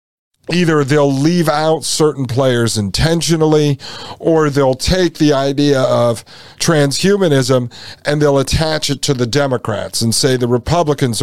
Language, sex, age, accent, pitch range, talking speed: English, male, 50-69, American, 125-155 Hz, 135 wpm